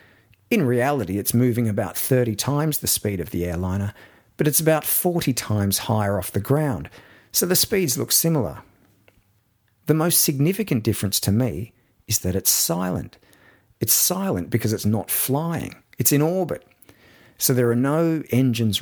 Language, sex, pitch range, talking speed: English, male, 100-140 Hz, 160 wpm